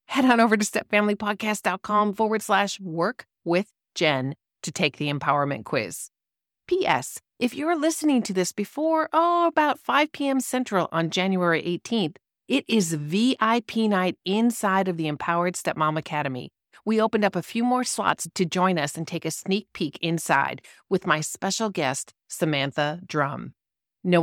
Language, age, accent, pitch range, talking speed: English, 40-59, American, 170-225 Hz, 155 wpm